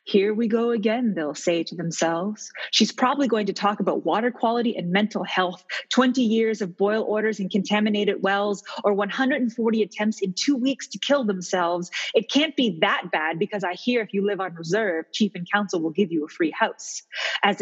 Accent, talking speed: American, 200 wpm